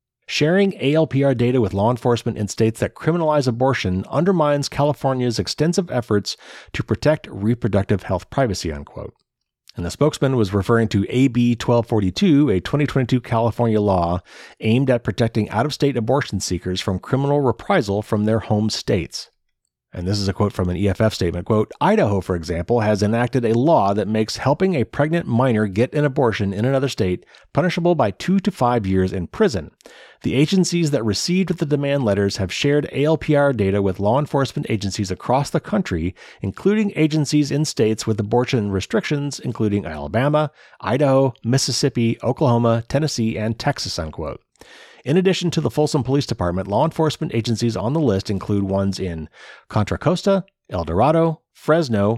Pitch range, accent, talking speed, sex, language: 100-145 Hz, American, 160 wpm, male, English